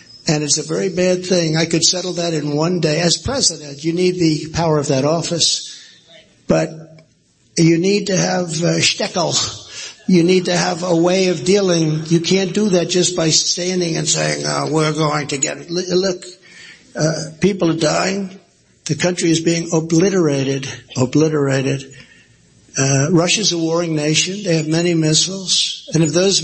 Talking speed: 170 wpm